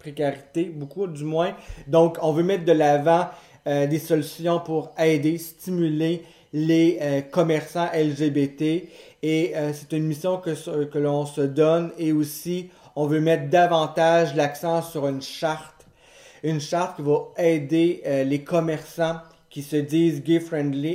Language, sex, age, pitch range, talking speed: French, male, 40-59, 150-170 Hz, 150 wpm